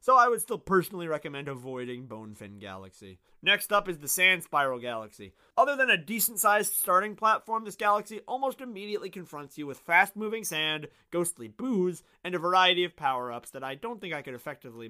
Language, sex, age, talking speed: English, male, 30-49, 190 wpm